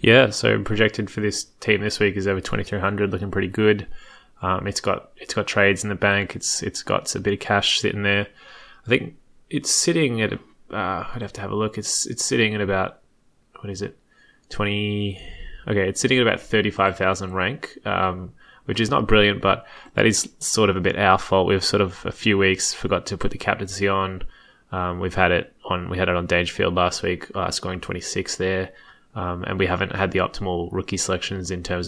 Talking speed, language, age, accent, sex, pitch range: 225 wpm, English, 20-39, Australian, male, 90-100 Hz